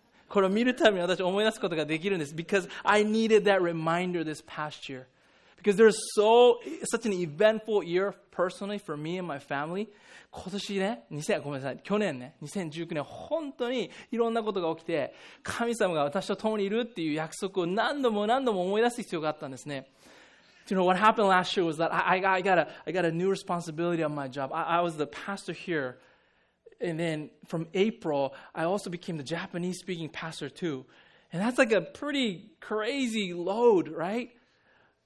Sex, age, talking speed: male, 20-39, 105 wpm